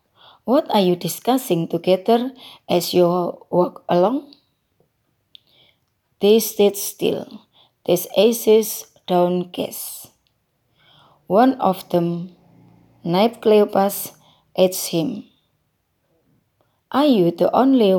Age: 30-49